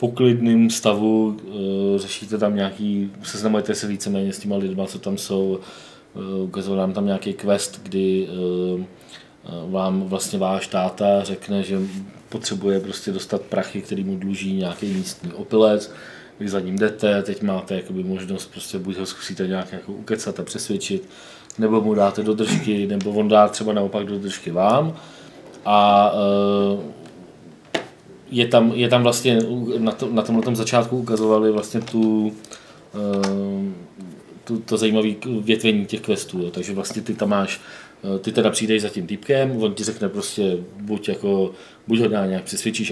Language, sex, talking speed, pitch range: Czech, male, 150 wpm, 100-115 Hz